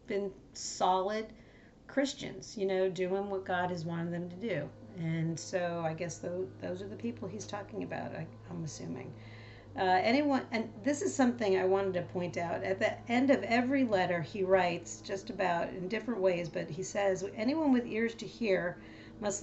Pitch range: 170-200 Hz